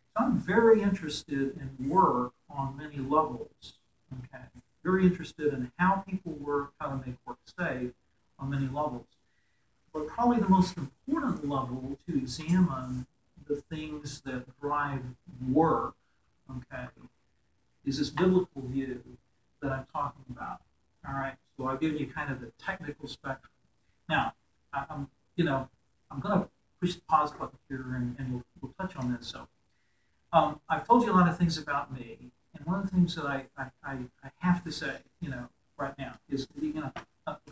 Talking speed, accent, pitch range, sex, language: 175 wpm, American, 130-175 Hz, male, English